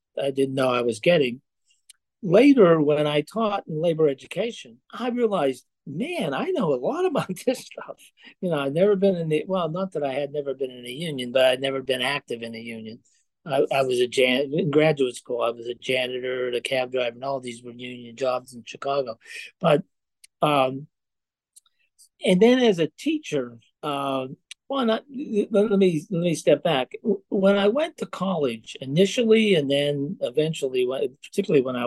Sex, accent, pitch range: male, American, 125-175 Hz